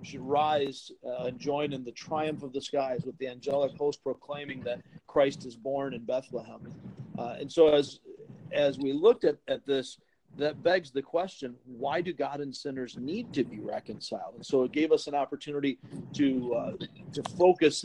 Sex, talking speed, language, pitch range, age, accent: male, 190 wpm, English, 135-170 Hz, 40-59, American